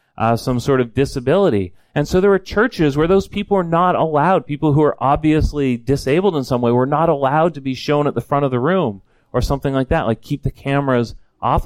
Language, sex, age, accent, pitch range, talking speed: English, male, 30-49, American, 115-160 Hz, 230 wpm